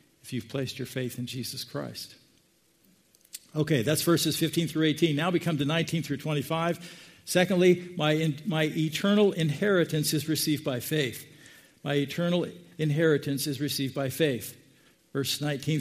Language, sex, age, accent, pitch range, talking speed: English, male, 50-69, American, 140-175 Hz, 150 wpm